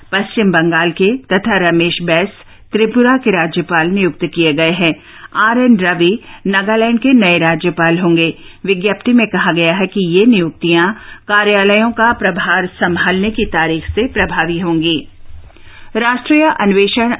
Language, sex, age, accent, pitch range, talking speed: Hindi, female, 50-69, native, 170-210 Hz, 135 wpm